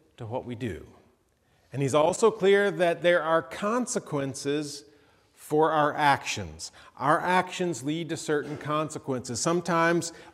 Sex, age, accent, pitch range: male, 40-59, American, 130-185 Hz